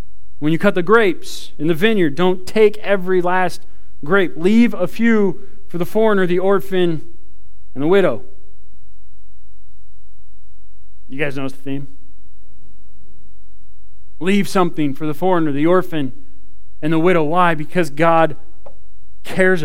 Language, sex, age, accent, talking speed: English, male, 40-59, American, 130 wpm